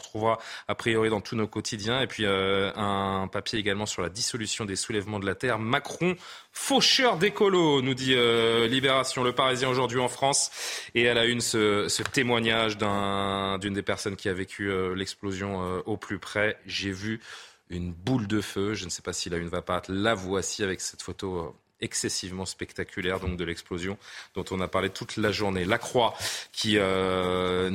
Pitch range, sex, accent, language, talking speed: 95-115 Hz, male, French, French, 195 wpm